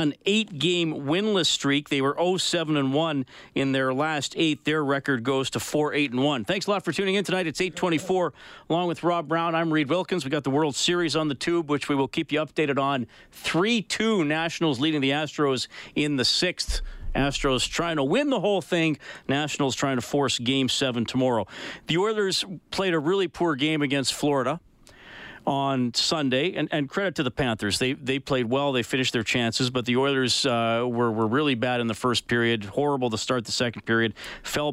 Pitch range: 125-155 Hz